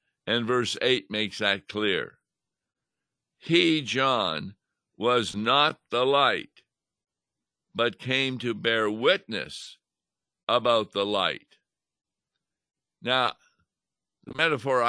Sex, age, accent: male, 60-79, American